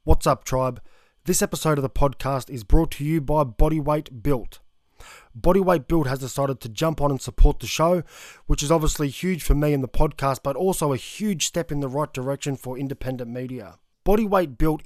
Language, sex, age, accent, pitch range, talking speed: English, male, 20-39, Australian, 135-160 Hz, 200 wpm